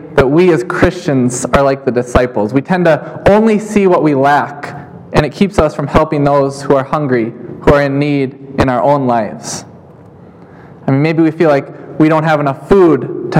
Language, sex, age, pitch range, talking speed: English, male, 20-39, 135-165 Hz, 205 wpm